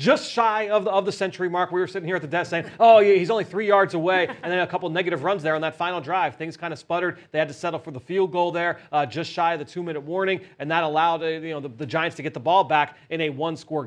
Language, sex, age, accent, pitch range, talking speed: English, male, 30-49, American, 155-185 Hz, 305 wpm